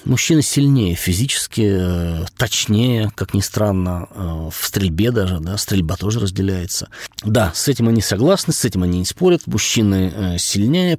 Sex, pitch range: male, 95-125 Hz